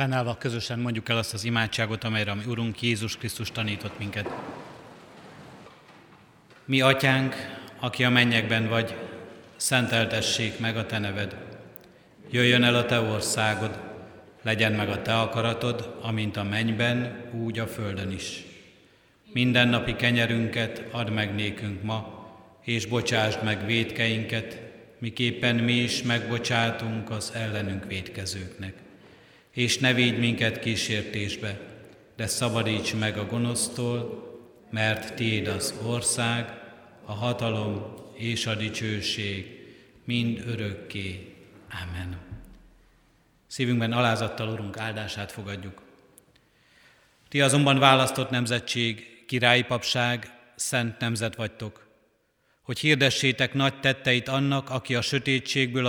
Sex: male